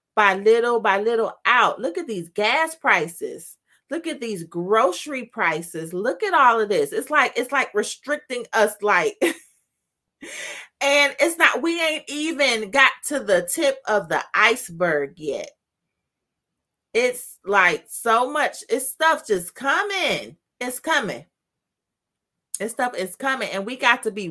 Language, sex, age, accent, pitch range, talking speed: English, female, 30-49, American, 205-280 Hz, 150 wpm